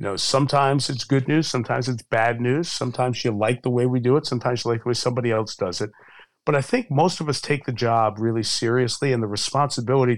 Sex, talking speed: male, 240 wpm